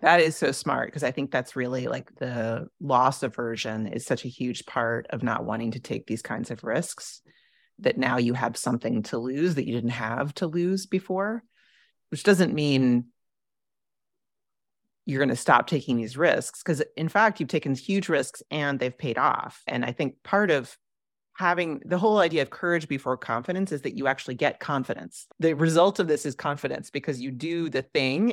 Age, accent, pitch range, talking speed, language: 30-49, American, 130-175 Hz, 195 wpm, English